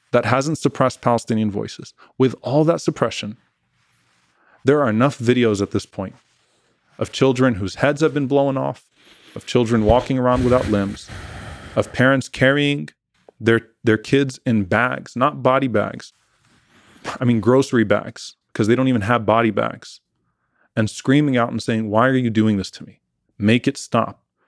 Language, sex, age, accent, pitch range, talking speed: English, male, 20-39, American, 110-140 Hz, 165 wpm